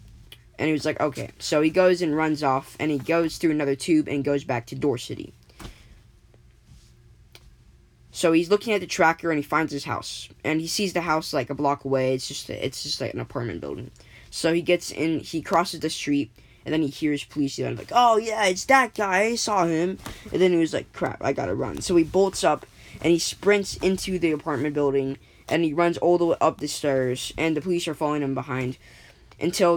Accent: American